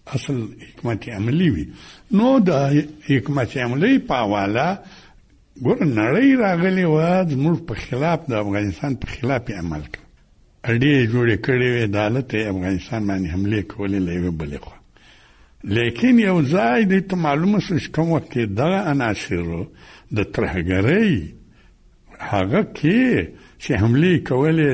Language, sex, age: Urdu, male, 60-79